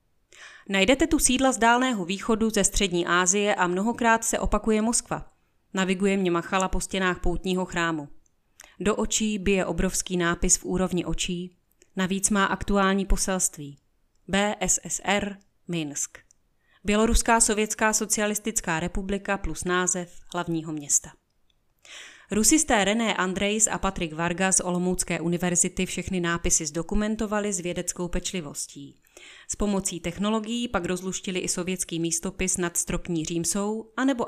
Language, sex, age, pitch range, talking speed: Czech, female, 30-49, 175-210 Hz, 125 wpm